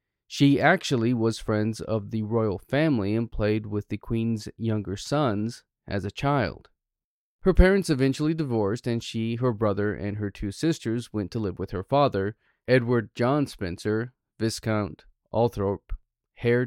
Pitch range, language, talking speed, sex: 105-130 Hz, English, 150 wpm, male